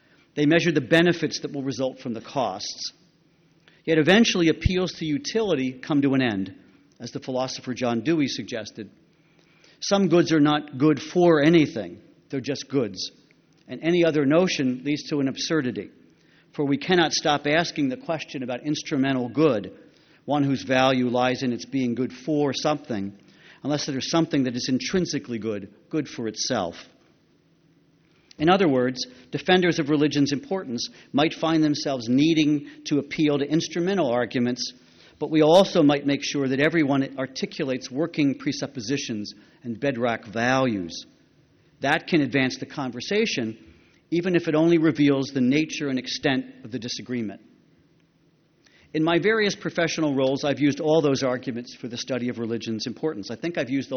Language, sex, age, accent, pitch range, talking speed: English, male, 50-69, American, 125-160 Hz, 155 wpm